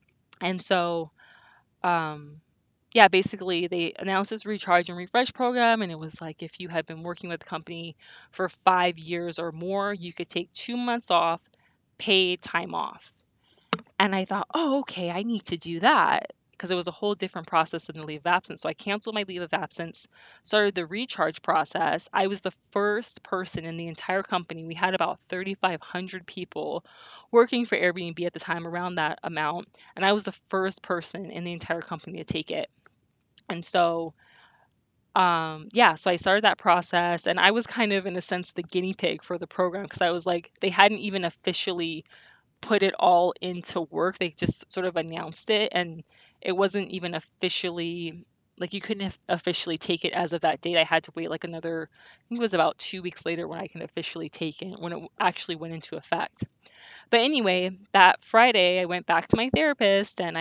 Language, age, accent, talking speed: English, 20-39, American, 200 wpm